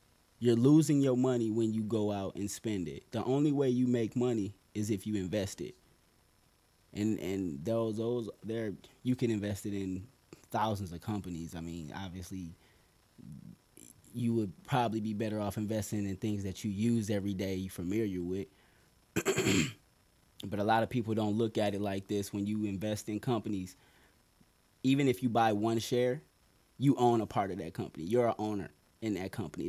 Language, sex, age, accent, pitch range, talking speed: English, male, 20-39, American, 100-130 Hz, 180 wpm